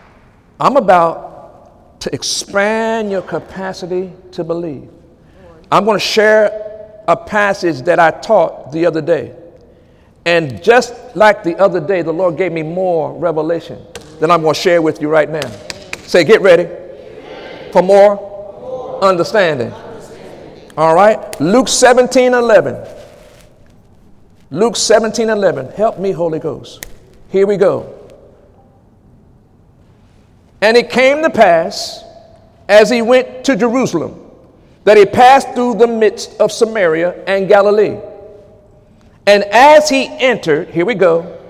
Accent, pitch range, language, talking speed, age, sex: American, 180-285 Hz, English, 125 wpm, 50-69, male